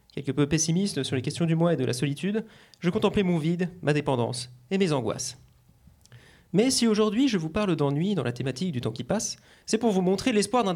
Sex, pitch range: male, 135-185 Hz